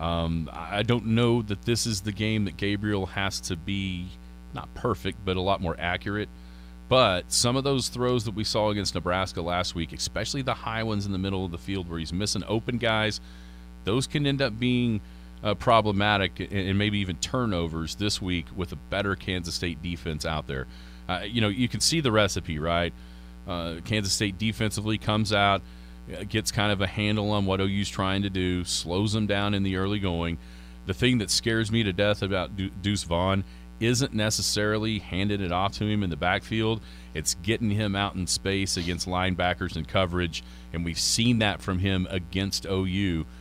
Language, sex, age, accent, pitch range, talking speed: English, male, 40-59, American, 85-105 Hz, 195 wpm